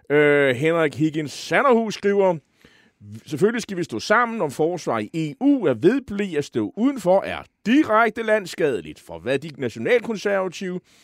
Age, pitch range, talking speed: 30-49, 125-190 Hz, 140 wpm